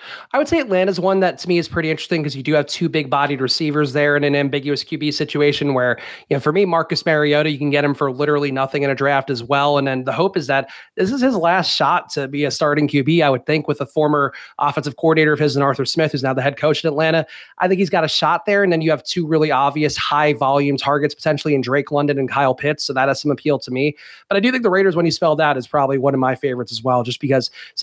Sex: male